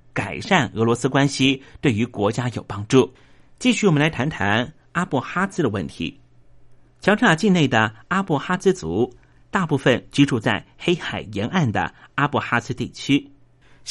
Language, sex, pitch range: Chinese, male, 115-150 Hz